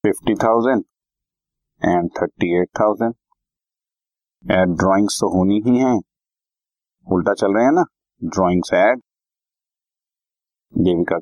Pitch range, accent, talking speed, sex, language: 95-130 Hz, native, 100 wpm, male, Hindi